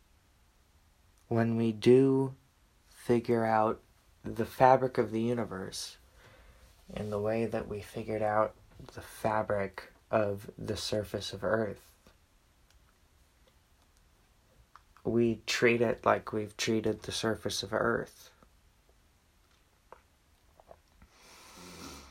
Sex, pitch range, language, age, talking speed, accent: male, 85-115 Hz, English, 30-49, 90 wpm, American